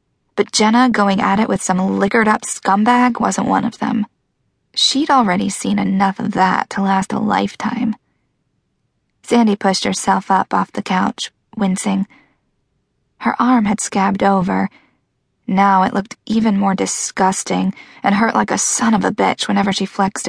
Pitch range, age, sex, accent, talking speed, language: 195-235 Hz, 20-39, female, American, 155 wpm, English